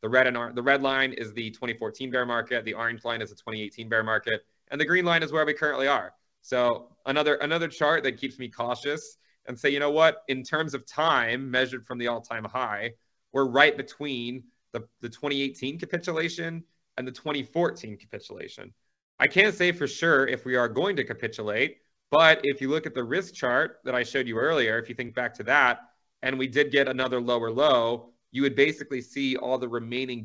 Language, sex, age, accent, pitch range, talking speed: English, male, 30-49, American, 110-140 Hz, 205 wpm